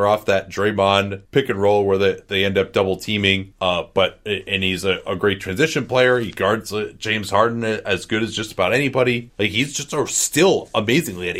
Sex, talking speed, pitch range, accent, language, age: male, 205 wpm, 95-115 Hz, American, English, 30-49